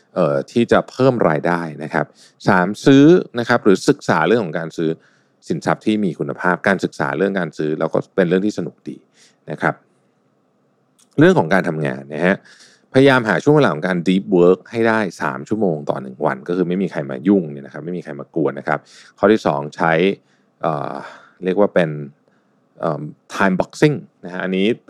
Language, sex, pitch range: Thai, male, 75-100 Hz